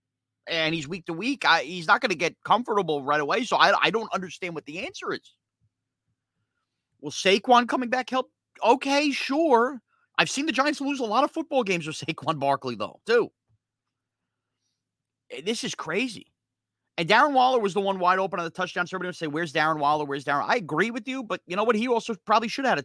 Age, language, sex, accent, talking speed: 30-49, English, male, American, 215 wpm